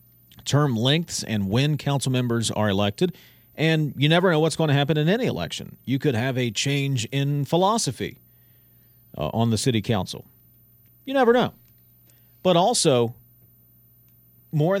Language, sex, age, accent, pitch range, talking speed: English, male, 40-59, American, 115-145 Hz, 150 wpm